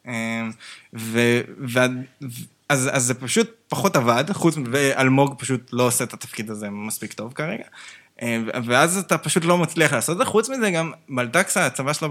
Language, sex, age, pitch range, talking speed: Hebrew, male, 20-39, 115-150 Hz, 175 wpm